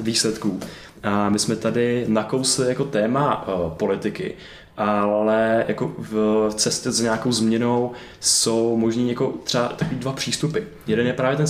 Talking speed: 135 wpm